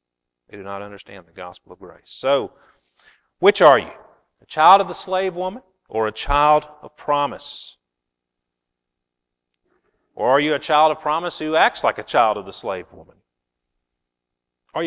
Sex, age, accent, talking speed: male, 40-59, American, 160 wpm